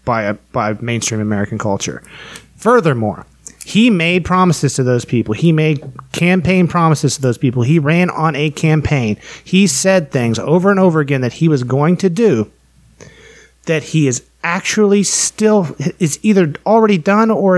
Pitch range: 135-175 Hz